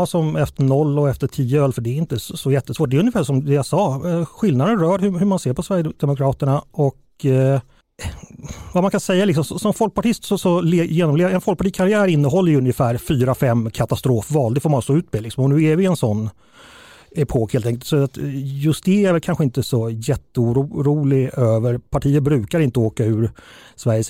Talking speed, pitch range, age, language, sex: 190 wpm, 120-150 Hz, 30-49, Swedish, male